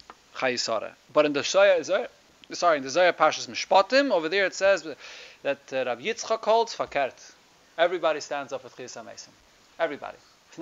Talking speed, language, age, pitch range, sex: 135 wpm, English, 30-49, 150-205 Hz, male